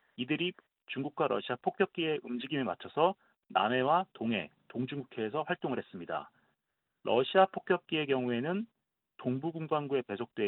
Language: Korean